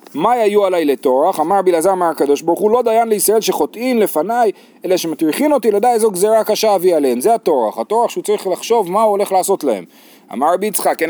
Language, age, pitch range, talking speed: Hebrew, 30-49, 180-255 Hz, 205 wpm